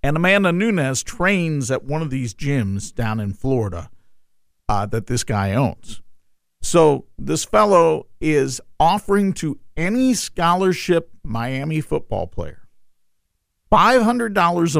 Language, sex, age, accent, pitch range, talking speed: English, male, 50-69, American, 100-165 Hz, 120 wpm